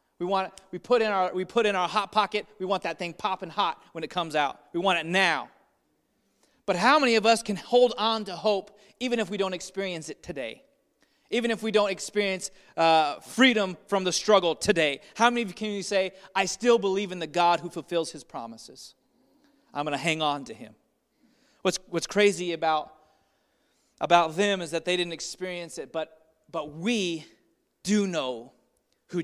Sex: male